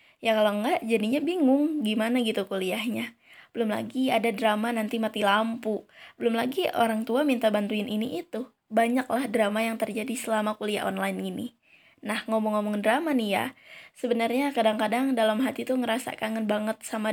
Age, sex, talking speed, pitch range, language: 20-39, female, 160 wpm, 220-255 Hz, Indonesian